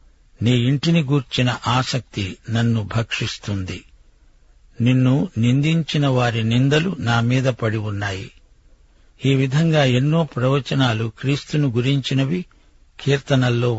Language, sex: Telugu, male